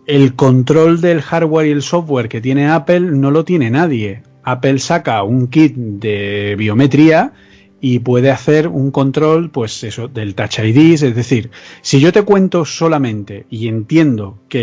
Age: 40-59